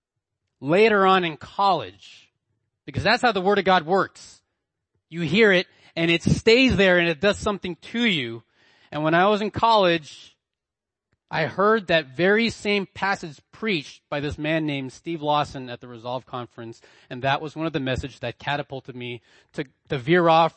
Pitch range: 120-165 Hz